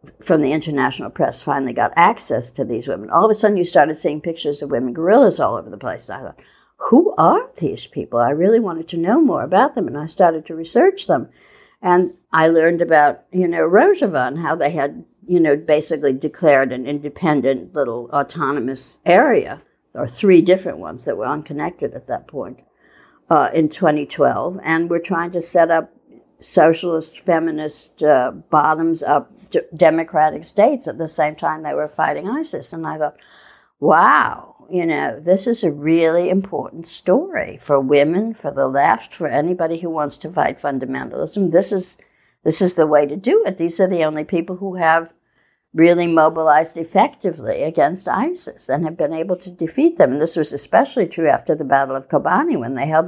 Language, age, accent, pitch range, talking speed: English, 60-79, American, 150-185 Hz, 185 wpm